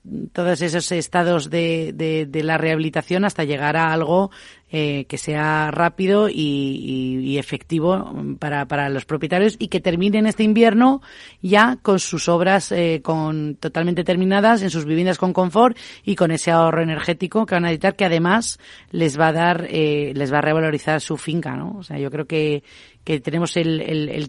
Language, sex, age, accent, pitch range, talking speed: Spanish, female, 30-49, Spanish, 155-185 Hz, 185 wpm